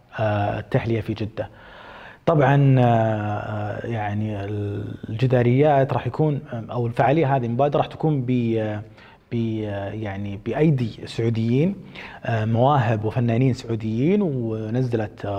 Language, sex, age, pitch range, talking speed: Arabic, male, 30-49, 110-140 Hz, 85 wpm